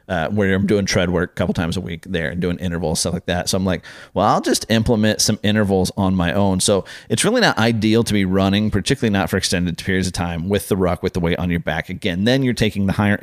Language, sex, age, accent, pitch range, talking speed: English, male, 30-49, American, 95-115 Hz, 270 wpm